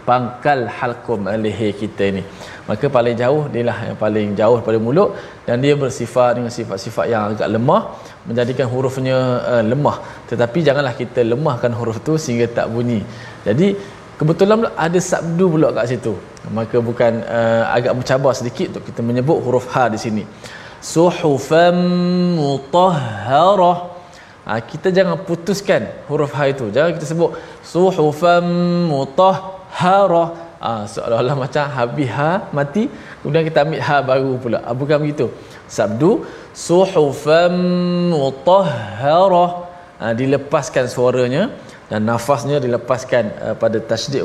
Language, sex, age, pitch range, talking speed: Malayalam, male, 20-39, 120-165 Hz, 135 wpm